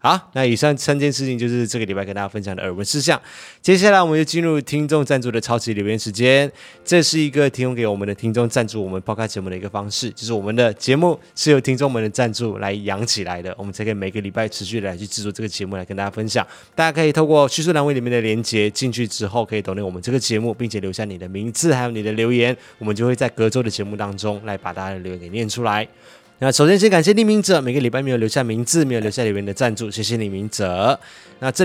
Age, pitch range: 20-39, 100-135 Hz